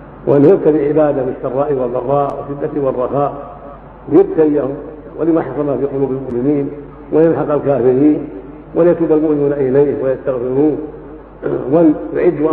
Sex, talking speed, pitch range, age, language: male, 95 wpm, 130-155 Hz, 50-69, Arabic